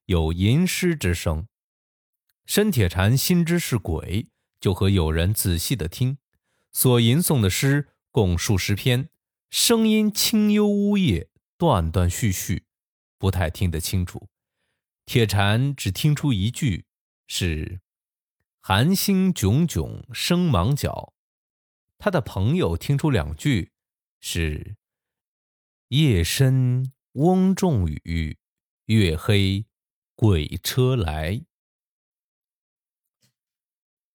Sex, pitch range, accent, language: male, 90-150 Hz, native, Chinese